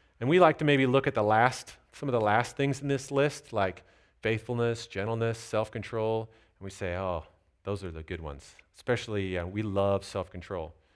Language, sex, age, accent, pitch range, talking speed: English, male, 40-59, American, 95-125 Hz, 190 wpm